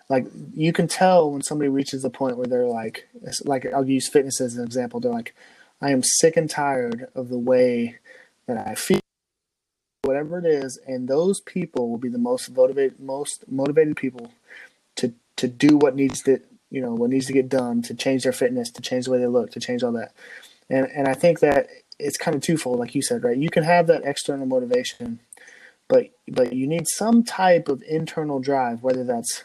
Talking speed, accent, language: 210 wpm, American, English